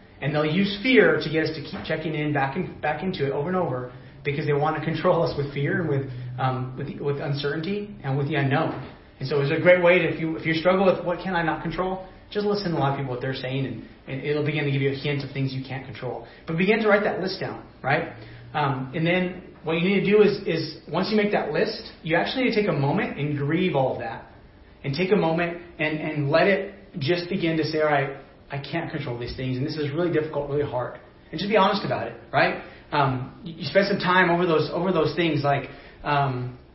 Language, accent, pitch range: English, American, 140-175 Hz